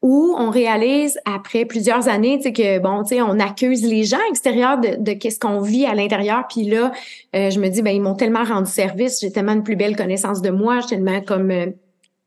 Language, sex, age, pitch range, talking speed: French, female, 30-49, 210-270 Hz, 230 wpm